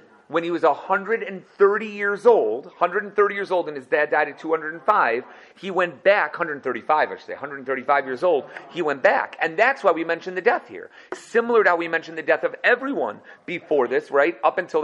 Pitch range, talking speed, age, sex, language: 140-195 Hz, 200 wpm, 40-59, male, English